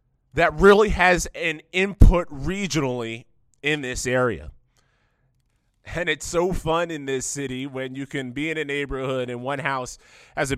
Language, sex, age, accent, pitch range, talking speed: English, male, 20-39, American, 125-160 Hz, 160 wpm